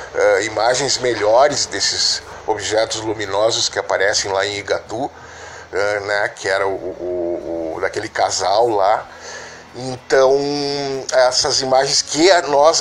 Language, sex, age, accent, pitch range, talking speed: Portuguese, male, 50-69, Brazilian, 115-155 Hz, 120 wpm